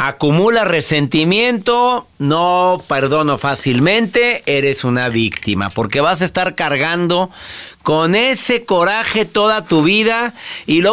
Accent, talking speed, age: Mexican, 115 wpm, 50-69